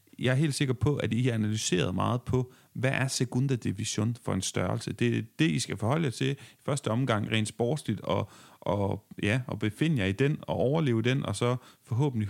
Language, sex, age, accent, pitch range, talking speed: Danish, male, 30-49, native, 110-140 Hz, 215 wpm